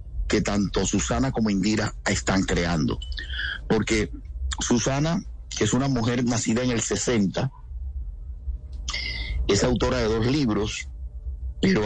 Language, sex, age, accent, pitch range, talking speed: Spanish, male, 50-69, Venezuelan, 80-115 Hz, 115 wpm